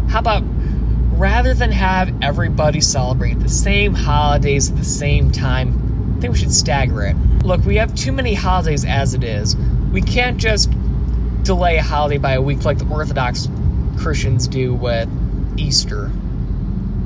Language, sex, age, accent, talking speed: English, male, 20-39, American, 160 wpm